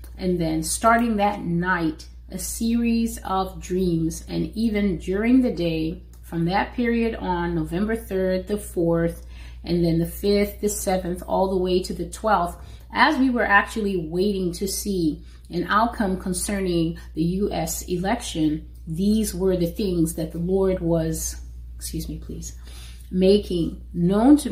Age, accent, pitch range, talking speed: 30-49, American, 170-210 Hz, 150 wpm